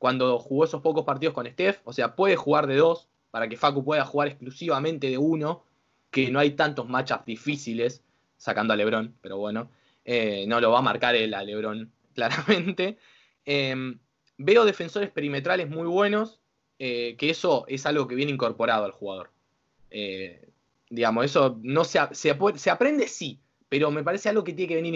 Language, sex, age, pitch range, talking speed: Spanish, male, 20-39, 135-175 Hz, 180 wpm